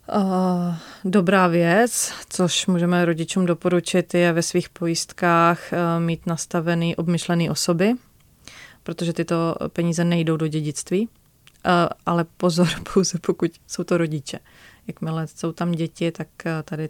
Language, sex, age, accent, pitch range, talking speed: Czech, female, 30-49, native, 160-175 Hz, 115 wpm